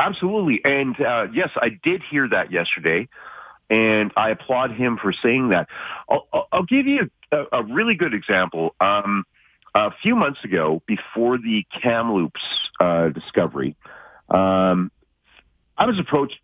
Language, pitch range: English, 90-125 Hz